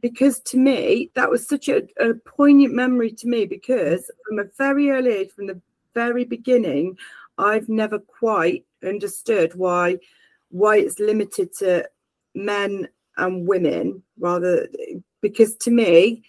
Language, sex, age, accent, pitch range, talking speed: English, female, 40-59, British, 180-230 Hz, 140 wpm